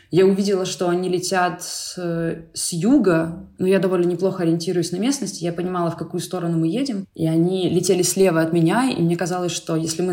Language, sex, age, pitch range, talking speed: Ukrainian, female, 20-39, 170-200 Hz, 200 wpm